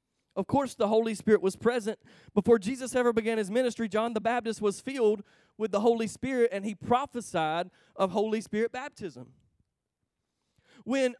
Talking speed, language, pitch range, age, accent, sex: 160 wpm, English, 205-255 Hz, 30-49, American, male